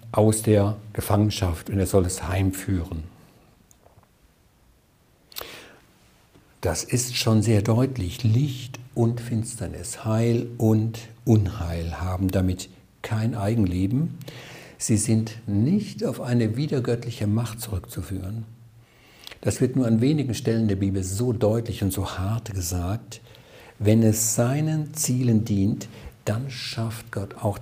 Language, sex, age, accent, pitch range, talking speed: German, male, 60-79, German, 100-120 Hz, 115 wpm